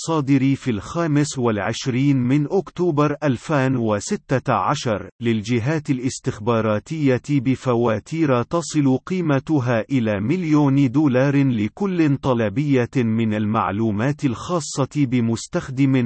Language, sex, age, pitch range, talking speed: Arabic, male, 40-59, 120-145 Hz, 80 wpm